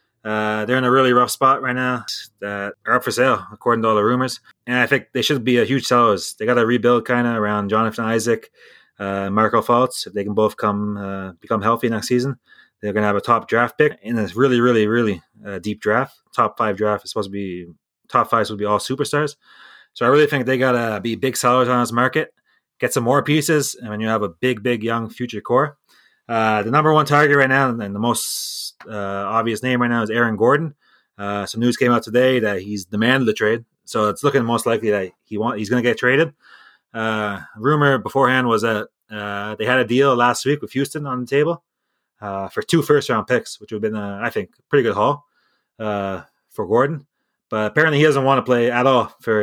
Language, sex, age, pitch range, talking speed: English, male, 20-39, 105-130 Hz, 235 wpm